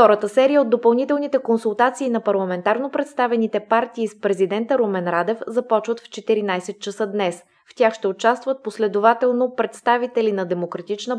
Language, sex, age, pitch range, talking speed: Bulgarian, female, 20-39, 200-245 Hz, 140 wpm